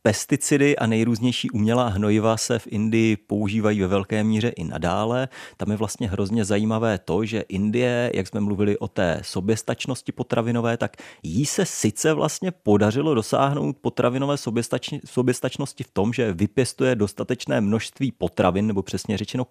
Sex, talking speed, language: male, 150 wpm, Czech